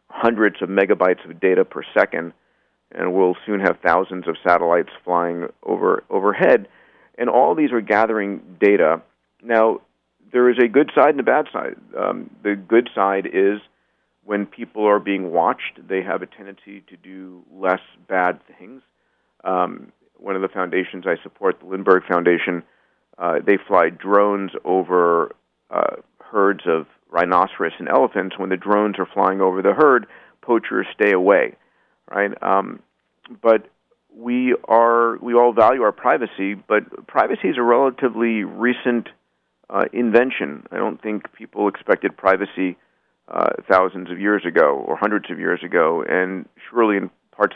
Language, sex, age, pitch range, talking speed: English, male, 50-69, 95-115 Hz, 155 wpm